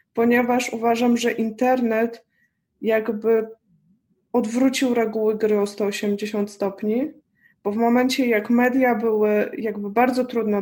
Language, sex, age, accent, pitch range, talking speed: Polish, female, 20-39, native, 210-245 Hz, 115 wpm